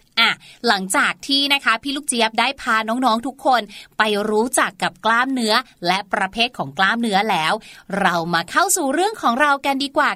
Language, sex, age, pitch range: Thai, female, 30-49, 230-300 Hz